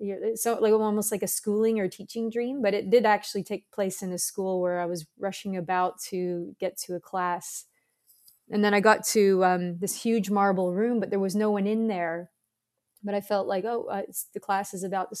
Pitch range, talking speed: 185-215 Hz, 220 wpm